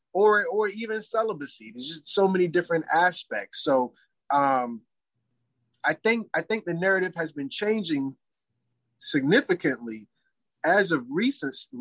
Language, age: English, 30-49